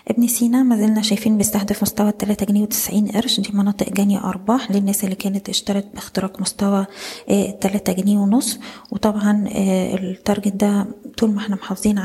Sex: female